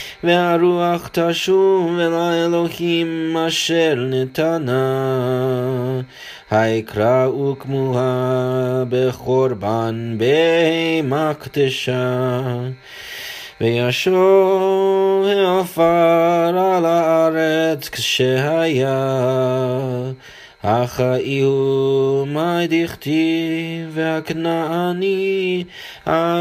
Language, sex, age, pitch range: English, male, 30-49, 130-165 Hz